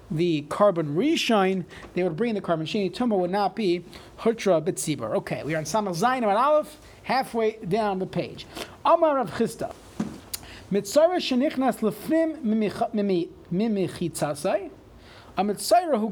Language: English